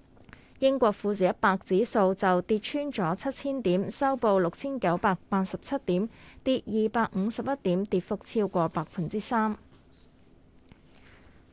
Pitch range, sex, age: 185-245 Hz, female, 20-39